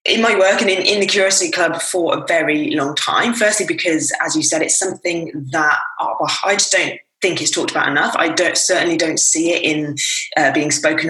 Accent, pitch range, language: British, 150-185 Hz, English